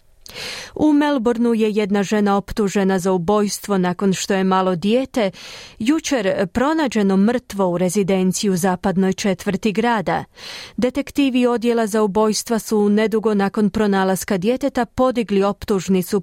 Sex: female